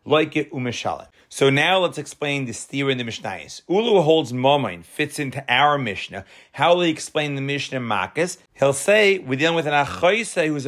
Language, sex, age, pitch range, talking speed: English, male, 40-59, 130-180 Hz, 185 wpm